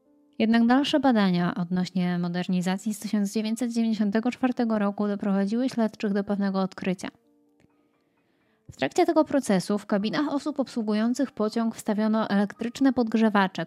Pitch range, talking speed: 190-235 Hz, 110 wpm